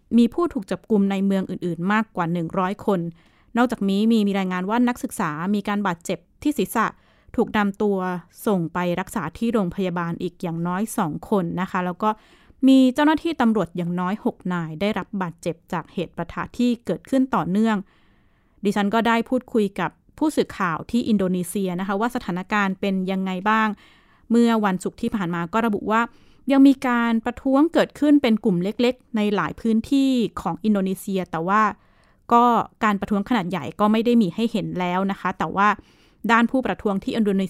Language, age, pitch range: Thai, 20-39, 185-230 Hz